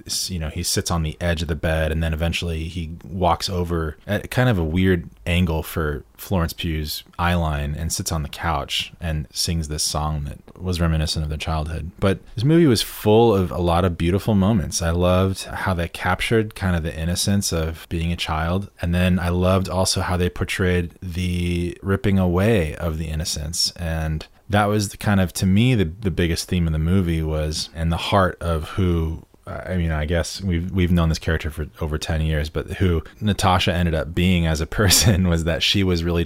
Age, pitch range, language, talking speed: 20-39, 80-95 Hz, English, 210 wpm